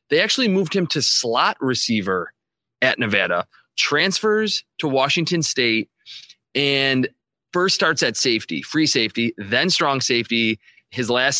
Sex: male